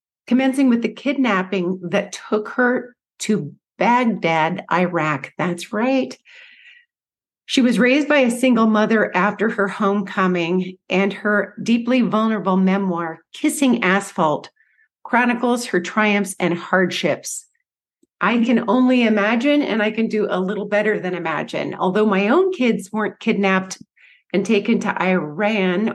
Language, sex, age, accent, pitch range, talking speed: English, female, 50-69, American, 185-240 Hz, 130 wpm